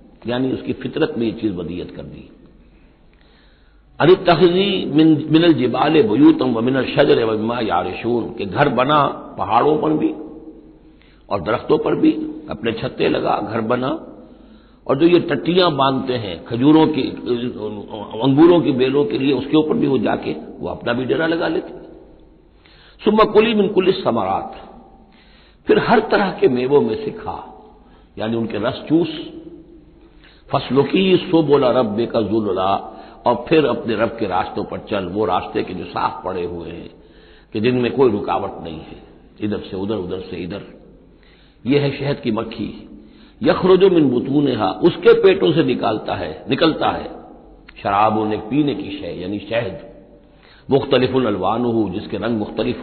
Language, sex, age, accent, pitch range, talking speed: Hindi, male, 60-79, native, 110-175 Hz, 155 wpm